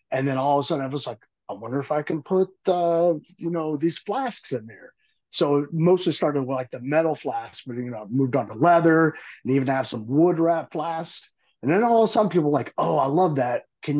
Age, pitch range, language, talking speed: 50-69, 130-175 Hz, English, 255 wpm